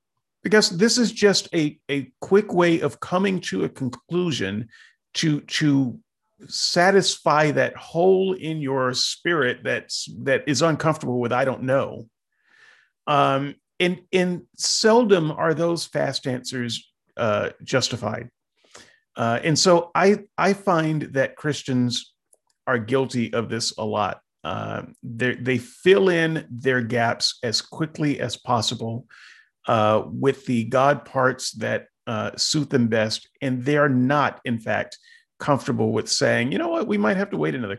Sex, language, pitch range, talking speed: male, English, 125-165 Hz, 145 wpm